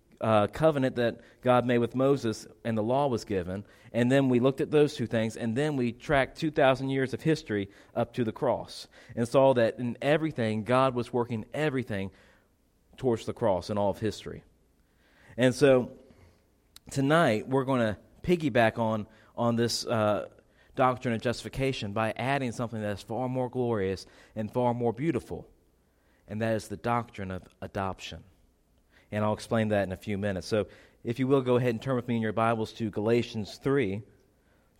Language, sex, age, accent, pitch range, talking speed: English, male, 40-59, American, 110-135 Hz, 180 wpm